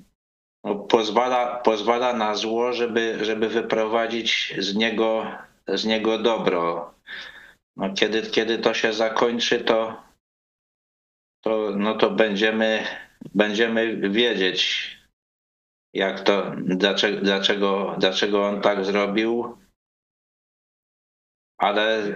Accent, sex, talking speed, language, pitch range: native, male, 90 wpm, Polish, 95-115 Hz